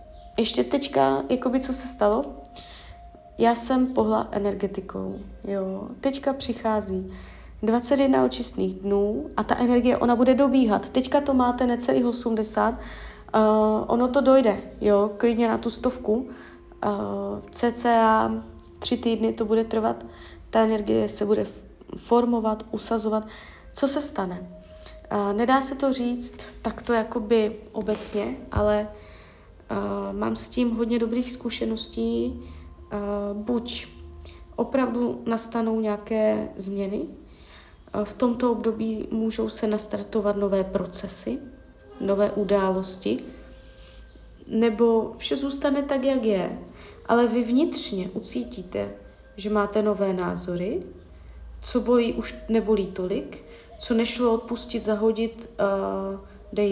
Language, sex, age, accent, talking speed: Czech, female, 30-49, native, 110 wpm